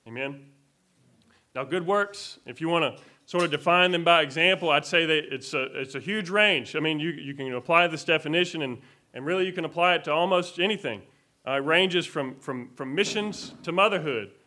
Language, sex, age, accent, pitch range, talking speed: English, male, 30-49, American, 135-180 Hz, 205 wpm